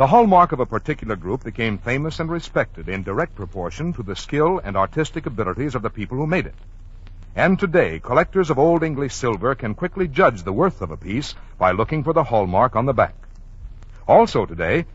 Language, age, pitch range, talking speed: English, 60-79, 100-155 Hz, 200 wpm